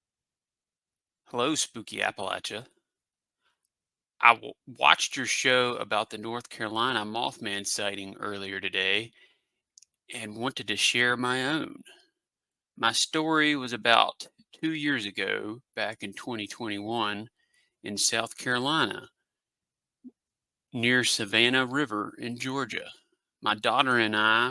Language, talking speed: English, 105 wpm